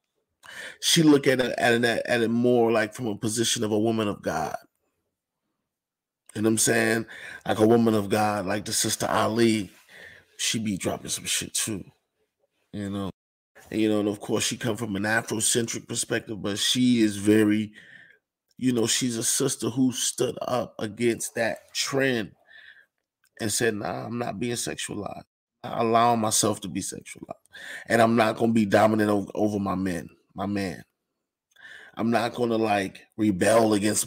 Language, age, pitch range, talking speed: English, 30-49, 105-120 Hz, 175 wpm